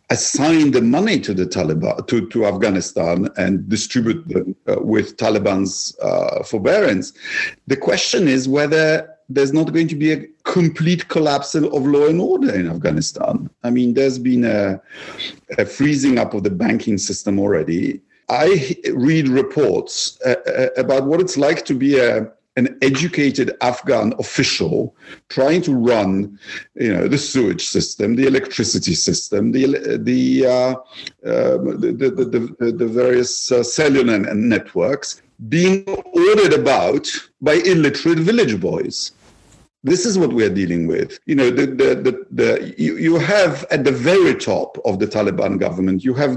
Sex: male